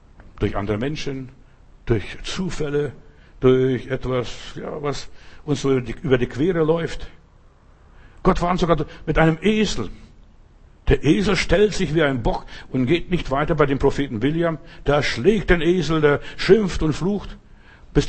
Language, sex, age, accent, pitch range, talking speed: German, male, 60-79, German, 115-155 Hz, 155 wpm